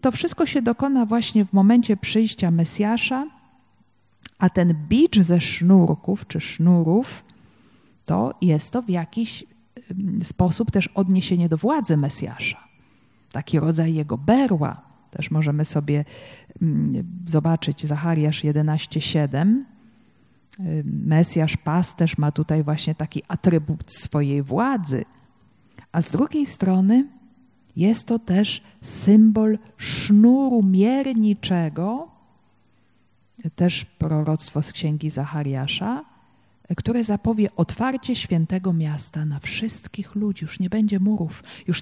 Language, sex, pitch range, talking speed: Polish, female, 160-220 Hz, 105 wpm